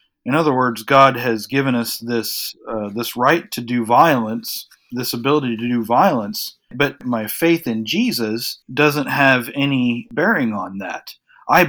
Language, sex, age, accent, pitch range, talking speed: English, male, 40-59, American, 115-145 Hz, 160 wpm